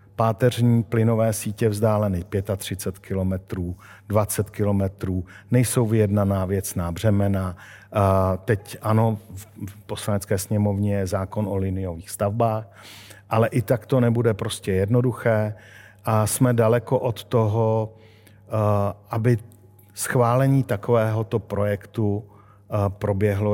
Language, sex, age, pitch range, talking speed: Czech, male, 50-69, 100-115 Hz, 100 wpm